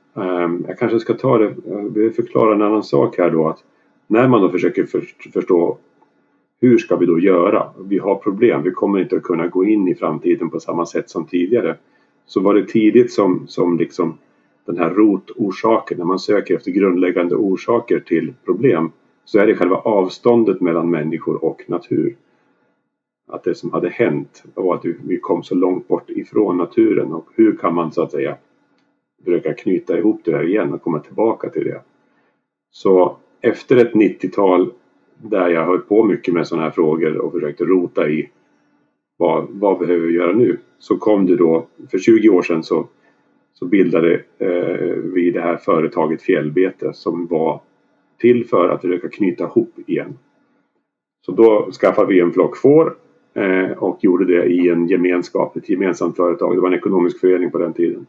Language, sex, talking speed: Swedish, male, 180 wpm